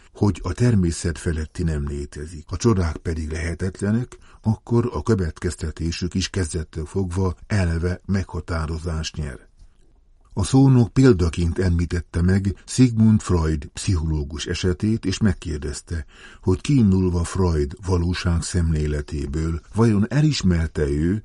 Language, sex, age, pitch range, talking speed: Hungarian, male, 50-69, 80-100 Hz, 105 wpm